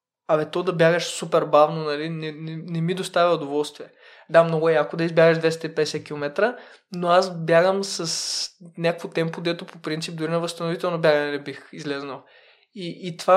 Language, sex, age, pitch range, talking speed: Bulgarian, male, 20-39, 165-210 Hz, 180 wpm